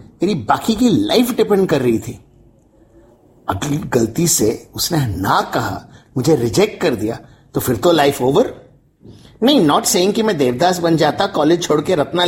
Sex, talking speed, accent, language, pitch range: male, 165 wpm, native, Hindi, 145-230 Hz